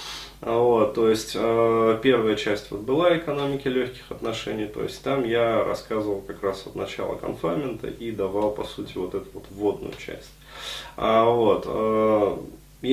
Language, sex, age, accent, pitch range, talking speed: Russian, male, 20-39, native, 105-125 Hz, 155 wpm